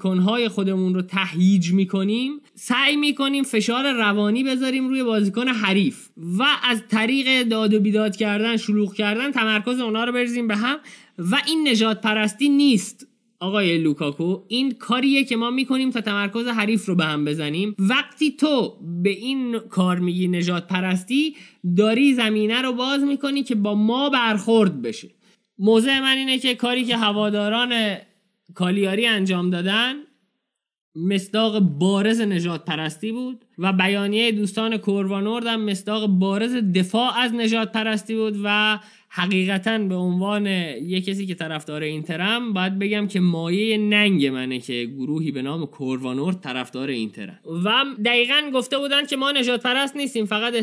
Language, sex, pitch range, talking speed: Persian, male, 185-240 Hz, 145 wpm